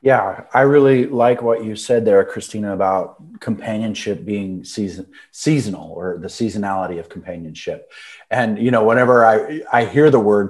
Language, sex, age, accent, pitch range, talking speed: English, male, 30-49, American, 100-130 Hz, 160 wpm